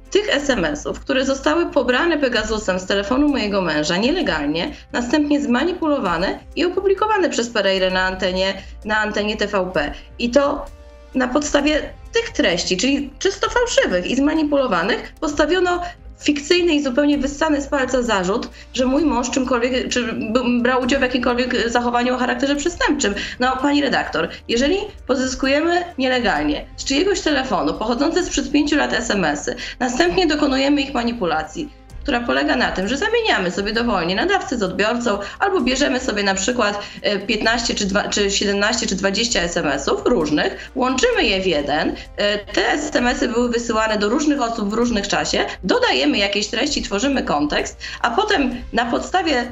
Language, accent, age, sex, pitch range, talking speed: Polish, native, 20-39, female, 225-300 Hz, 140 wpm